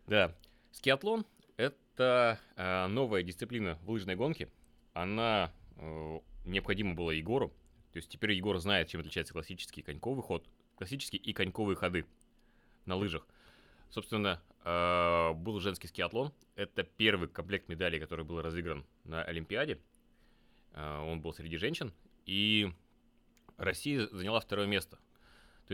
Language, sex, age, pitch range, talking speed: Russian, male, 30-49, 85-110 Hz, 130 wpm